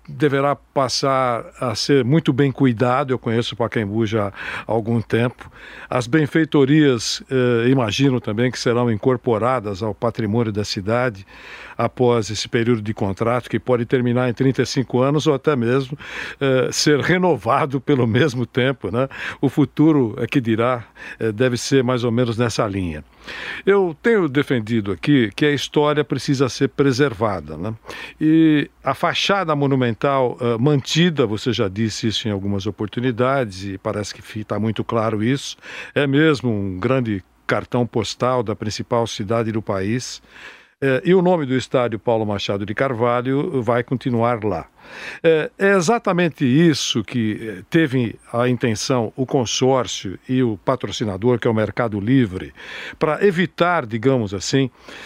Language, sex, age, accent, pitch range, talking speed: Portuguese, male, 60-79, Brazilian, 115-140 Hz, 145 wpm